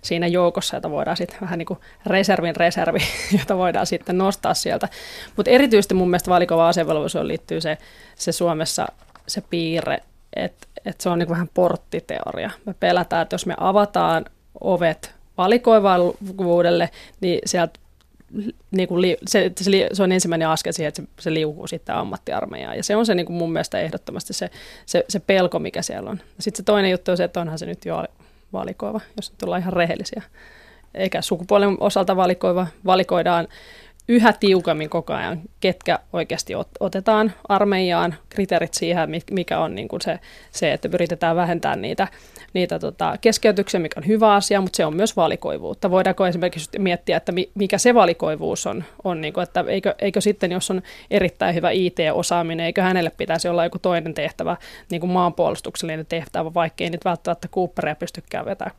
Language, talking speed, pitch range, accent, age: Finnish, 165 wpm, 170-200 Hz, native, 20-39